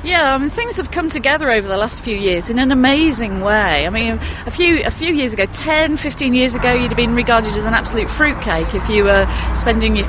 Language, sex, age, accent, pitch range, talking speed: English, female, 40-59, British, 200-255 Hz, 245 wpm